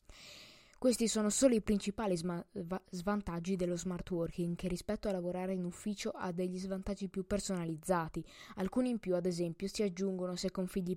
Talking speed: 160 wpm